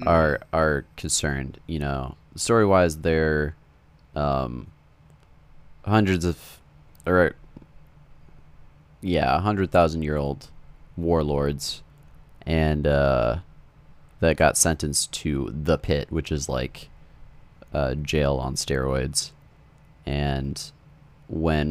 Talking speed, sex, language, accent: 100 wpm, male, English, American